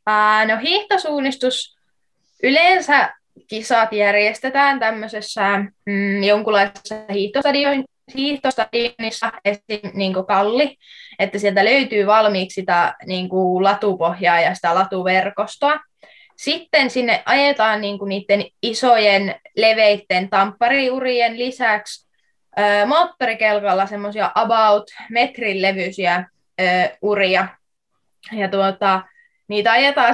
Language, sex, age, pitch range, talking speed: Finnish, female, 20-39, 195-255 Hz, 85 wpm